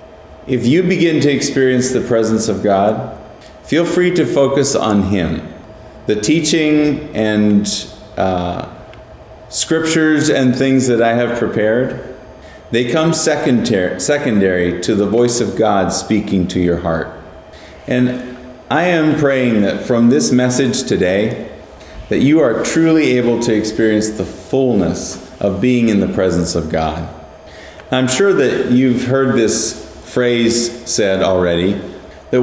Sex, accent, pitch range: male, American, 95-135 Hz